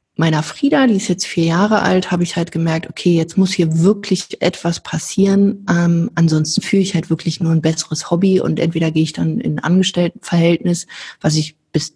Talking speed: 200 wpm